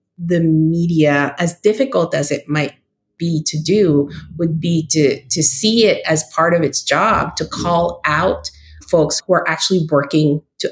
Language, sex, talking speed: English, female, 170 wpm